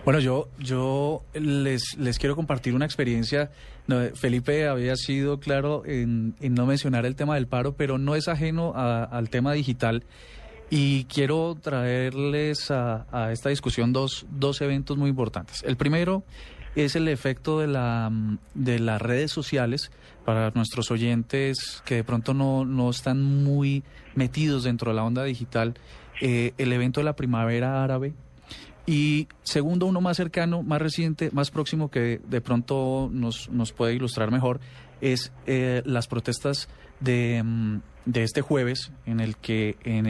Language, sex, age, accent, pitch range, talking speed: Spanish, male, 20-39, Colombian, 115-140 Hz, 155 wpm